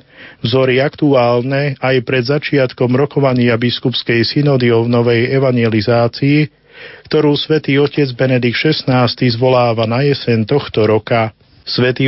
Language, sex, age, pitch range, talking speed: Slovak, male, 40-59, 120-140 Hz, 110 wpm